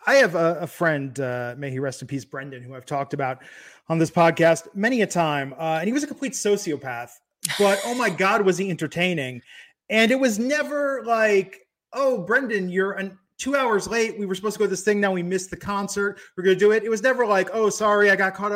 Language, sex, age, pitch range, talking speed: English, male, 30-49, 175-230 Hz, 240 wpm